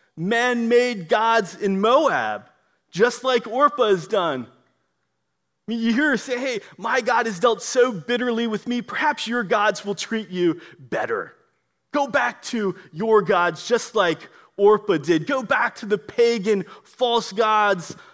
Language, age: English, 30-49